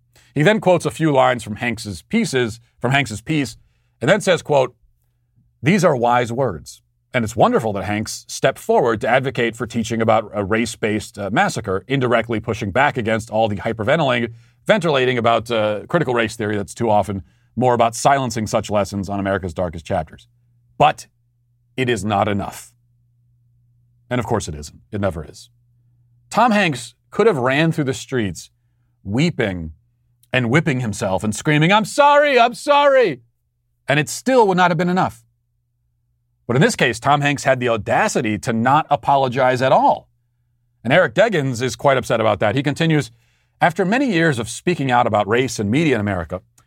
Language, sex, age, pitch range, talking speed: English, male, 40-59, 110-140 Hz, 175 wpm